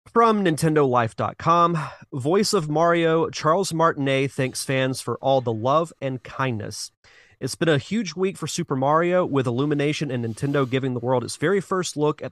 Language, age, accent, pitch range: English, 30-49, American, 125-150 Hz